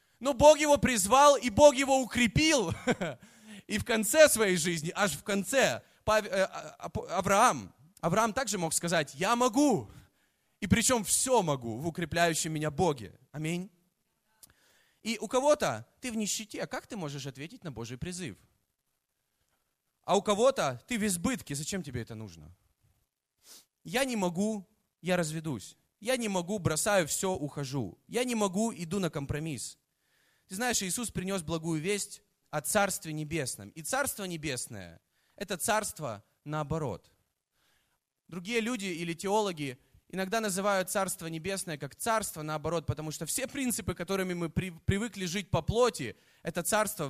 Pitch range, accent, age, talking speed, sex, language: 155-215 Hz, native, 20-39, 140 wpm, male, Russian